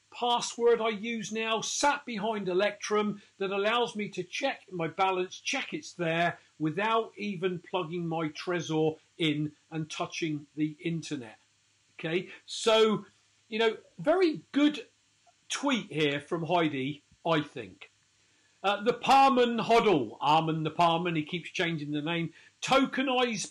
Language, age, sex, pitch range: English, 40-59, male, 160-215 Hz